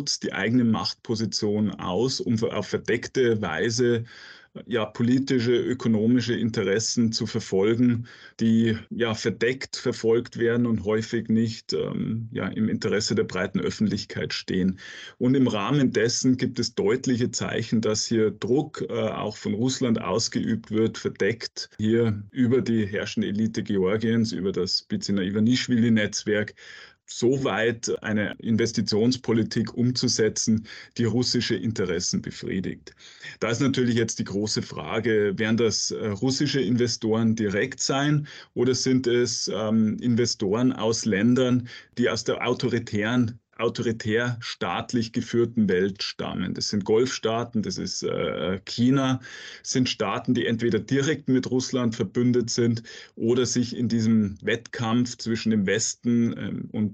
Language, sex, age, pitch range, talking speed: German, male, 30-49, 110-125 Hz, 130 wpm